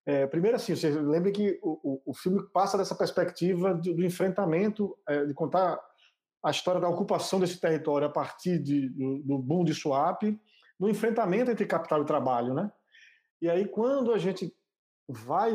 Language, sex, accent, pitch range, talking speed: Portuguese, male, Brazilian, 155-200 Hz, 180 wpm